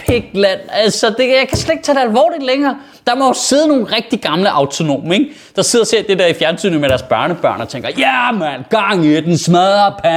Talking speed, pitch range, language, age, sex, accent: 225 wpm, 185-260 Hz, Danish, 30-49, male, native